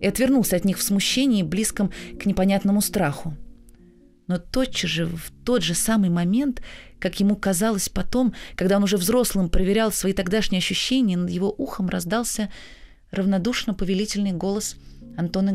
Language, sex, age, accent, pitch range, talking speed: Russian, female, 30-49, native, 150-210 Hz, 145 wpm